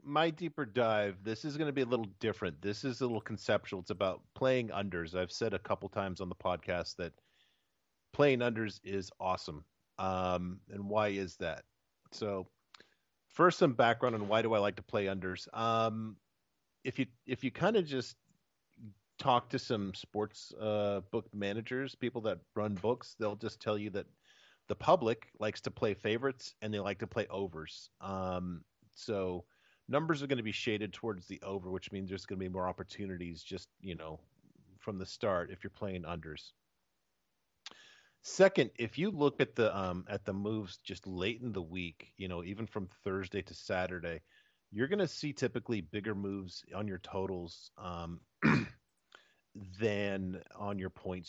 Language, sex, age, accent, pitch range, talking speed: English, male, 40-59, American, 90-115 Hz, 180 wpm